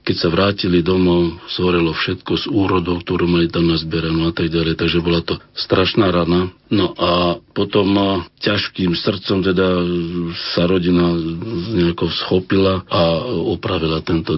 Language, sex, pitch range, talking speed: Slovak, male, 85-95 Hz, 145 wpm